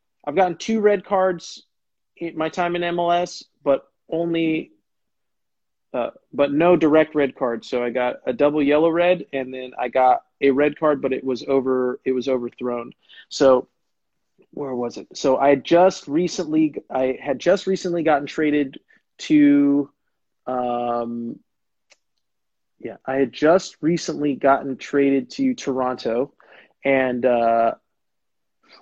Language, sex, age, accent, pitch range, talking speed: English, male, 30-49, American, 130-170 Hz, 140 wpm